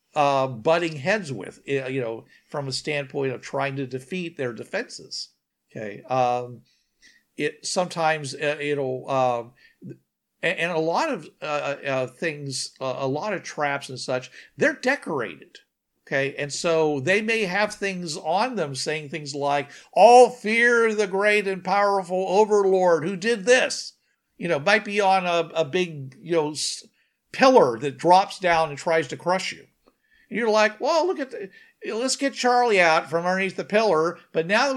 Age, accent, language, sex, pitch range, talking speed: 50-69, American, English, male, 145-210 Hz, 170 wpm